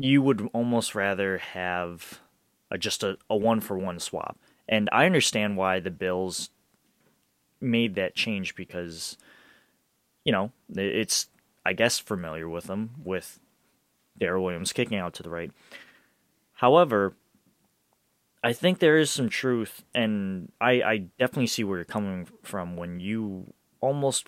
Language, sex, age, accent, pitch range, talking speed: English, male, 20-39, American, 90-120 Hz, 140 wpm